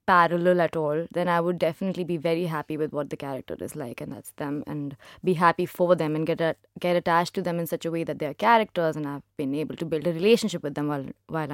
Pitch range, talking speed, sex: 165-195 Hz, 265 wpm, female